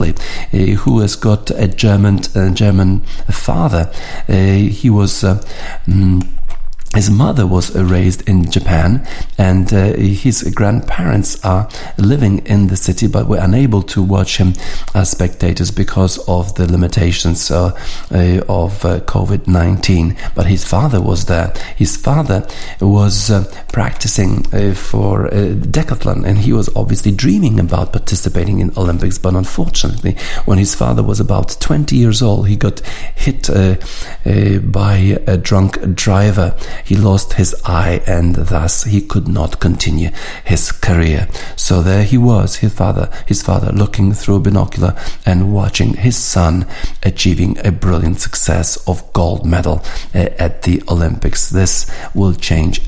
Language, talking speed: English, 145 wpm